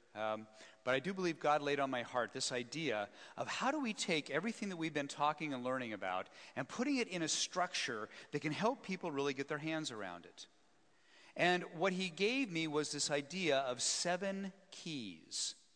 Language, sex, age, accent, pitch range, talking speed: English, male, 40-59, American, 120-165 Hz, 200 wpm